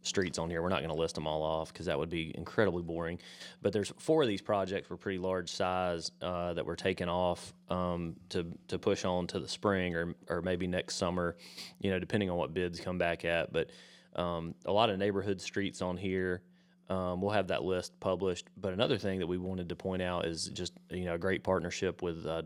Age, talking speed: 30-49, 230 wpm